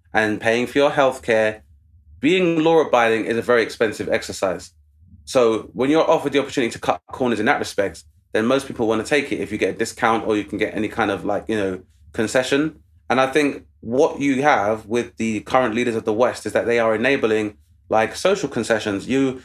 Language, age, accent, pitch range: English, 20-39, British, 105-140 Hz